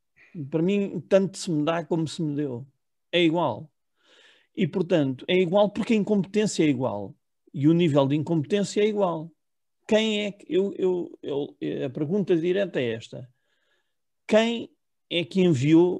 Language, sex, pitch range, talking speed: Portuguese, male, 145-195 Hz, 150 wpm